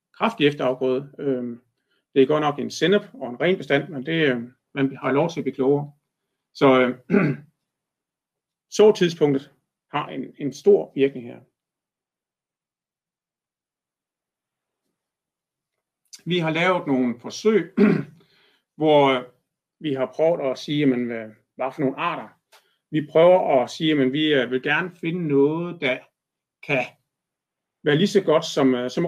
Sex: male